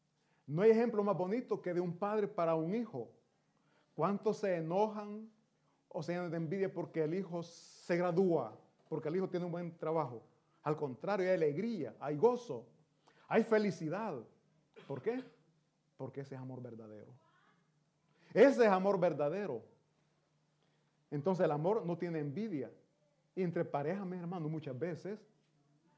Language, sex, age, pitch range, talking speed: Italian, male, 30-49, 150-185 Hz, 150 wpm